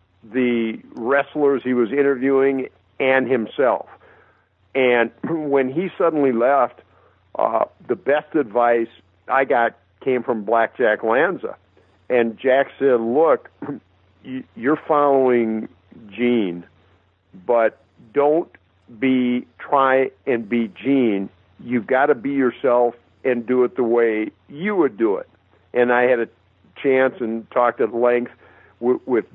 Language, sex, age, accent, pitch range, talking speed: English, male, 50-69, American, 115-135 Hz, 125 wpm